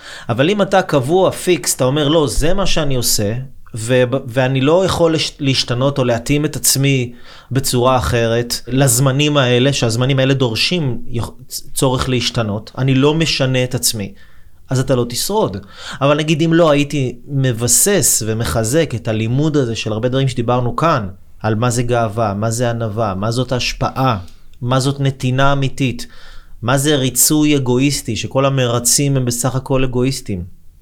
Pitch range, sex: 115-145 Hz, male